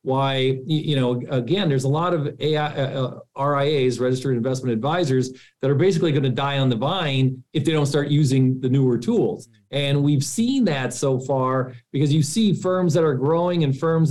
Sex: male